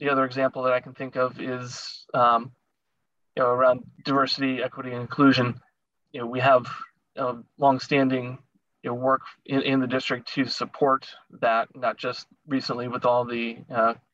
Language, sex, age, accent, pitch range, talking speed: English, male, 20-39, American, 120-135 Hz, 170 wpm